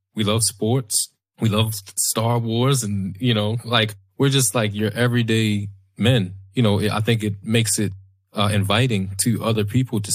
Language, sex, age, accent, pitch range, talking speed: English, male, 20-39, American, 100-115 Hz, 175 wpm